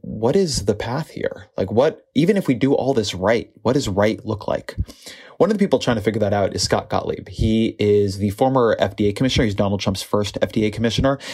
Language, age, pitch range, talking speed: English, 20-39, 100-115 Hz, 230 wpm